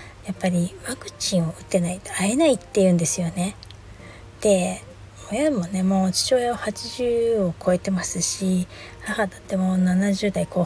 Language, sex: Japanese, female